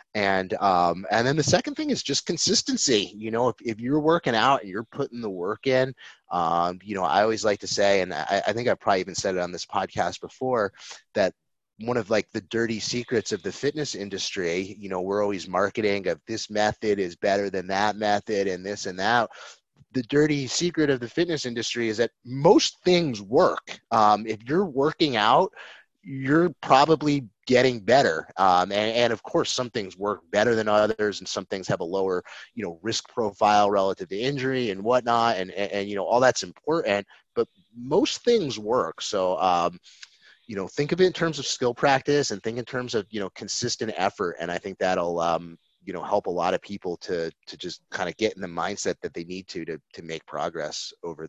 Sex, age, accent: male, 30-49, American